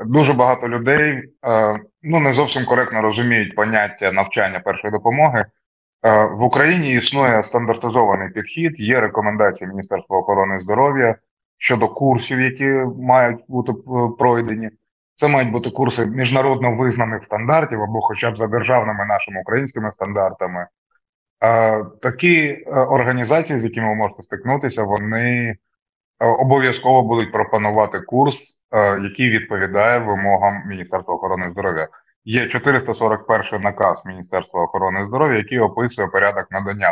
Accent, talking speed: native, 115 wpm